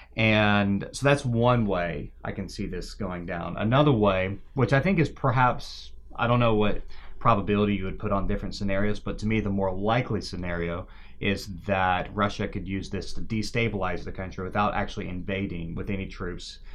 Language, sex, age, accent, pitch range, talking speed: English, male, 30-49, American, 90-105 Hz, 185 wpm